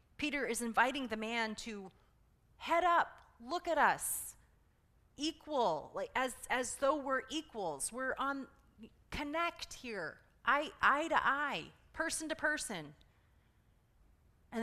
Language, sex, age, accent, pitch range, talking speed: English, female, 30-49, American, 205-270 Hz, 125 wpm